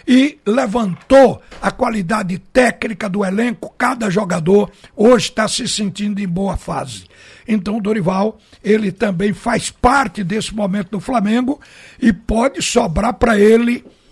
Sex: male